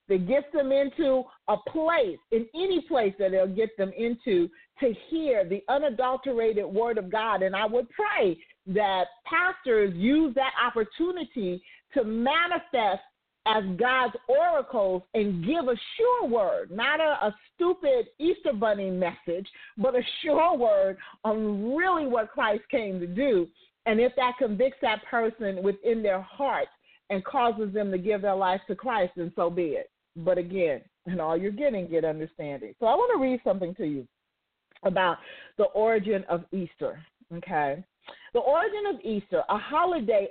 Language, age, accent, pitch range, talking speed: English, 40-59, American, 195-285 Hz, 160 wpm